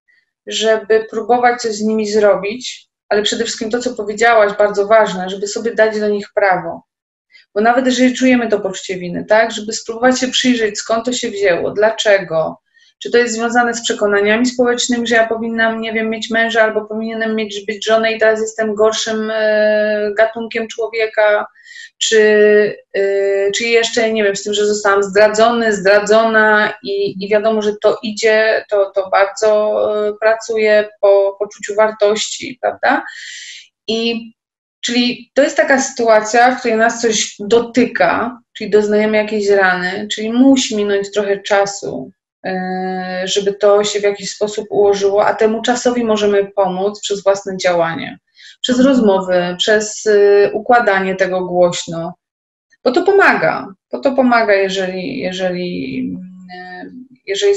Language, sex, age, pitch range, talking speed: Polish, female, 30-49, 200-235 Hz, 145 wpm